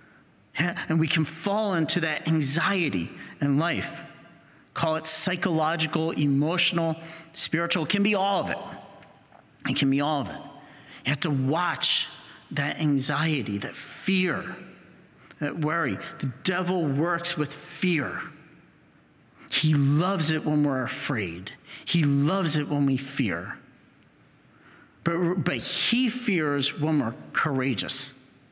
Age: 50-69